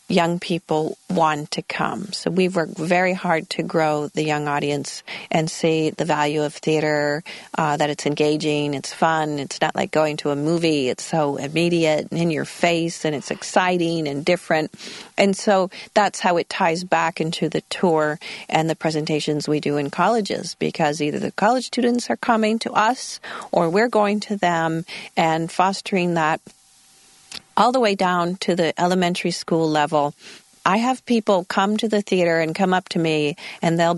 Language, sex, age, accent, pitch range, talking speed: English, female, 40-59, American, 155-220 Hz, 180 wpm